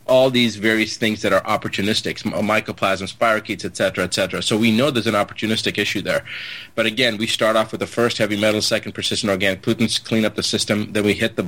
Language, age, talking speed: English, 40-59, 215 wpm